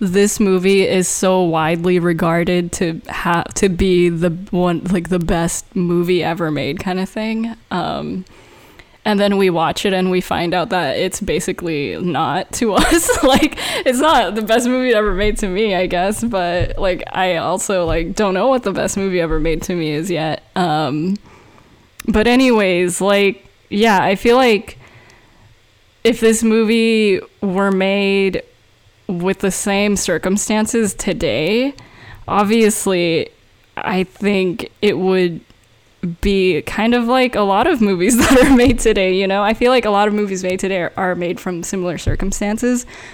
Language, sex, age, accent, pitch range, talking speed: English, female, 10-29, American, 175-210 Hz, 165 wpm